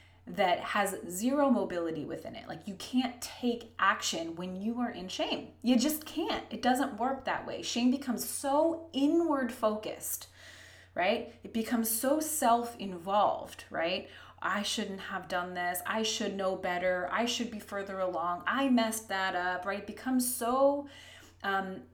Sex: female